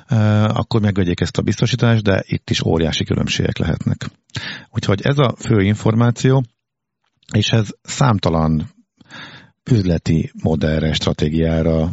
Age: 50-69